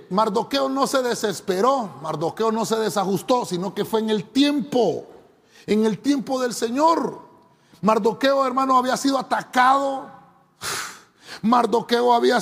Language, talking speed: Spanish, 125 wpm